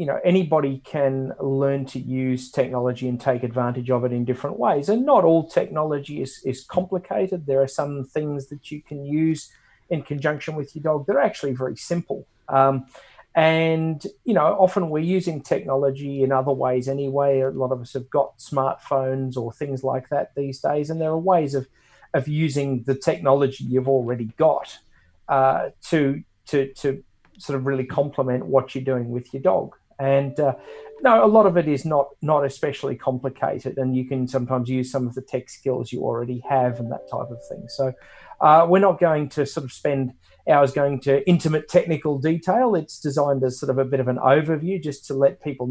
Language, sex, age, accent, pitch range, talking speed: English, male, 40-59, Australian, 130-150 Hz, 200 wpm